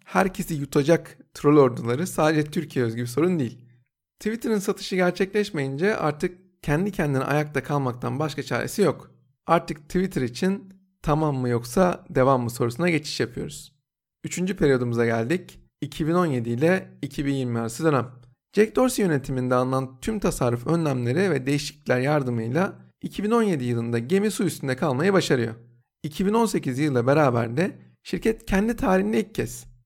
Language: Turkish